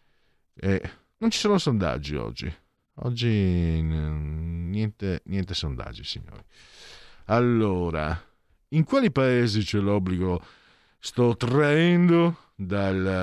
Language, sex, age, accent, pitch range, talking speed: Italian, male, 50-69, native, 90-120 Hz, 90 wpm